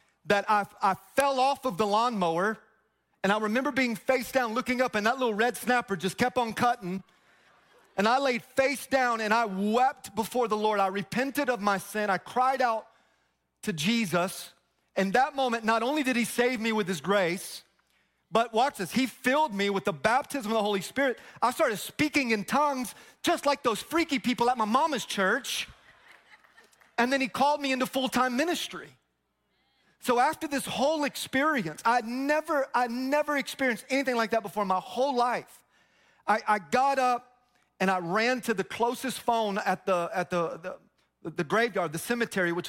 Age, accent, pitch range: 30-49, American, 200-255 Hz